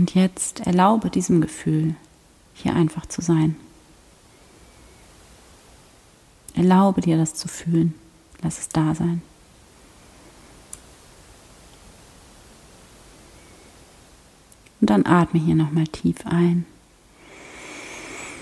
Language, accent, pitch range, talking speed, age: German, German, 155-175 Hz, 80 wpm, 30-49